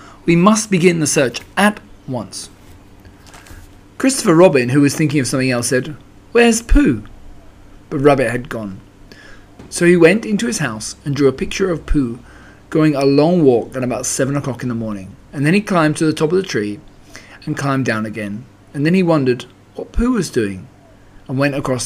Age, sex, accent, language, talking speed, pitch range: 40-59, male, British, English, 190 wpm, 105-160 Hz